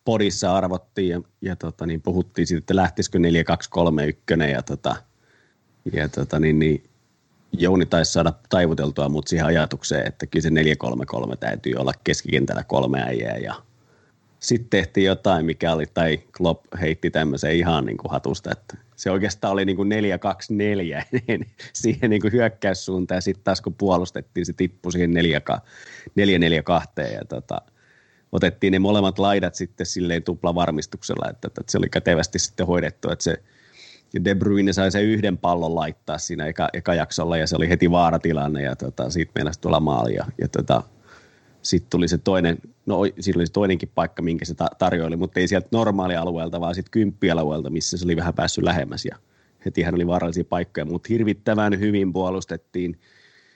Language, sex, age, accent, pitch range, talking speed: Finnish, male, 30-49, native, 80-95 Hz, 160 wpm